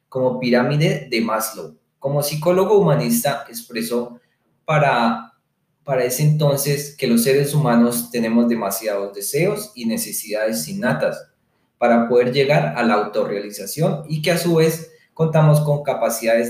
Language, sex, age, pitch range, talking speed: Bengali, male, 20-39, 125-165 Hz, 130 wpm